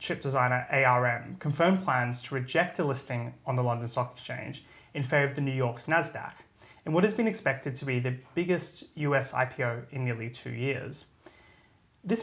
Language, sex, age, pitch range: English, male, 20-39, 125-160 Hz